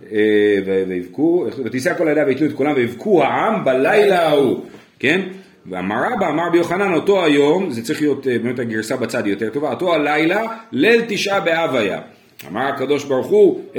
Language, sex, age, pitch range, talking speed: Hebrew, male, 40-59, 115-190 Hz, 160 wpm